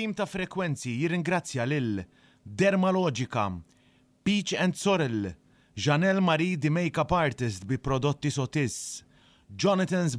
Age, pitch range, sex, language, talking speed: 30-49, 100-145 Hz, male, English, 100 wpm